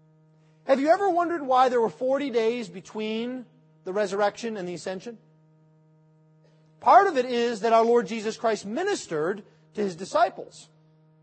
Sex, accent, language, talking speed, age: male, American, English, 150 wpm, 40-59